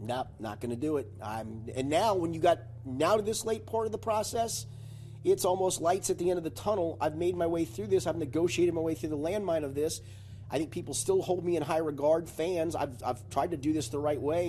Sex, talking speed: male, 265 wpm